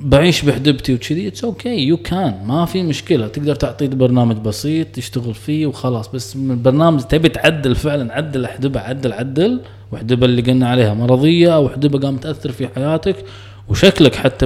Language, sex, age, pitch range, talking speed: Arabic, male, 20-39, 115-145 Hz, 160 wpm